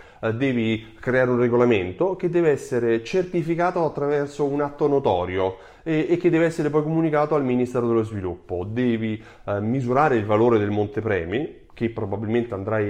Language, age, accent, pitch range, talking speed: Italian, 30-49, native, 105-155 Hz, 155 wpm